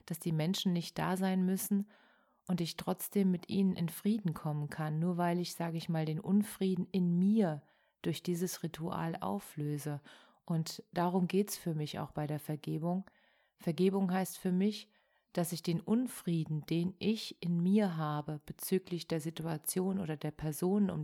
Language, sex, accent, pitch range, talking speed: German, female, German, 160-195 Hz, 170 wpm